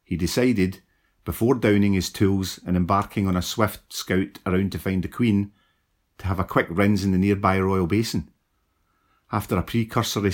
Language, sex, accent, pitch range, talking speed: English, male, British, 95-110 Hz, 175 wpm